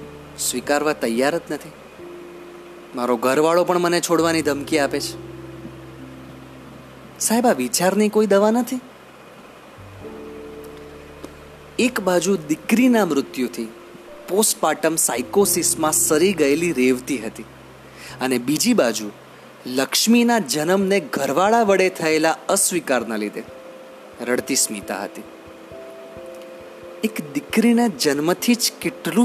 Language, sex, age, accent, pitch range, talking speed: Gujarati, male, 30-49, native, 110-180 Hz, 45 wpm